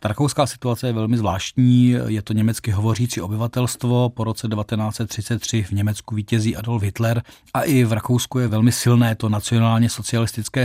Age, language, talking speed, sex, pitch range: 40-59, Czech, 165 wpm, male, 105-120 Hz